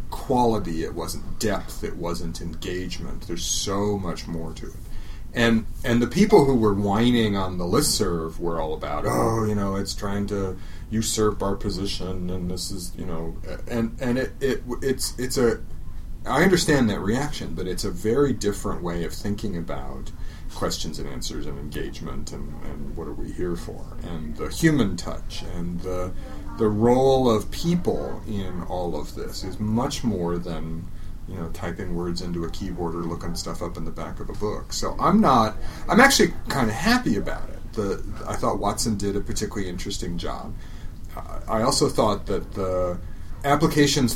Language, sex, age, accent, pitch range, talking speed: English, male, 40-59, American, 85-115 Hz, 180 wpm